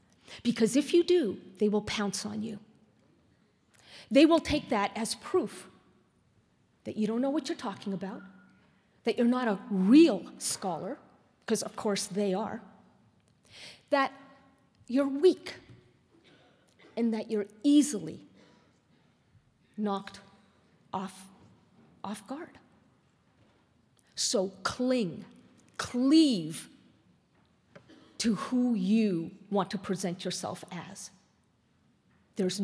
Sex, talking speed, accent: female, 105 wpm, American